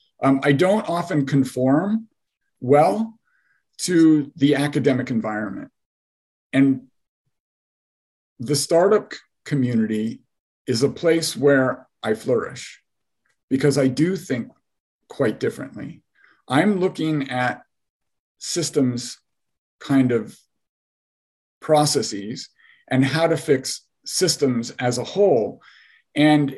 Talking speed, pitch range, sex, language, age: 95 wpm, 130-155 Hz, male, English, 50-69